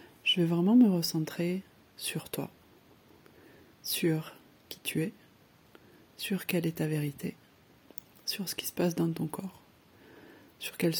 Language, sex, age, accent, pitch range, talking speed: French, female, 30-49, French, 160-185 Hz, 140 wpm